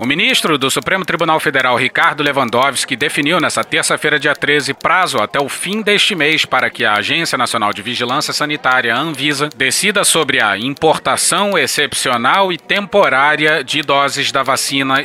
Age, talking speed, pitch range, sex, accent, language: 30-49, 155 wpm, 130-170 Hz, male, Brazilian, Portuguese